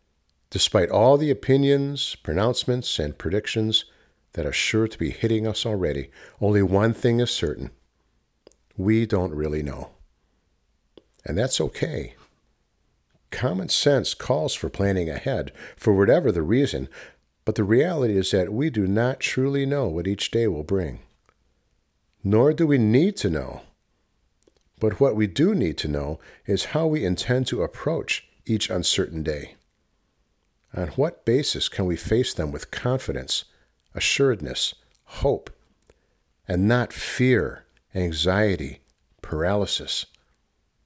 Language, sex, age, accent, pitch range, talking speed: English, male, 50-69, American, 80-120 Hz, 130 wpm